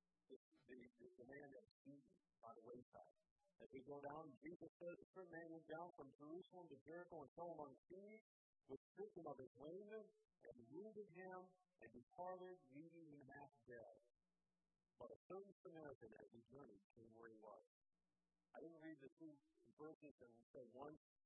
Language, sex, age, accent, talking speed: English, male, 50-69, American, 180 wpm